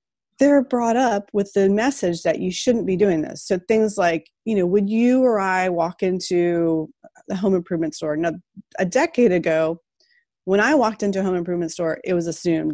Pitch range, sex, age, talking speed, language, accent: 170-240 Hz, female, 30-49, 200 wpm, English, American